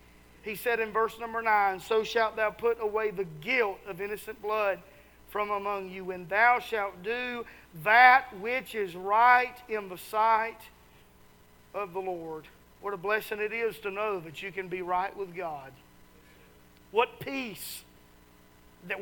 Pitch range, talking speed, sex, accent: 180-230 Hz, 160 wpm, male, American